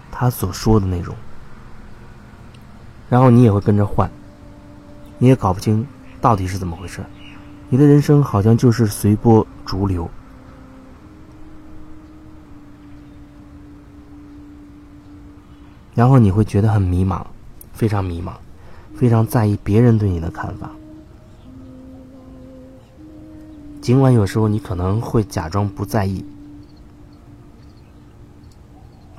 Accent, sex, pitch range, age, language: native, male, 95-115 Hz, 30-49, Chinese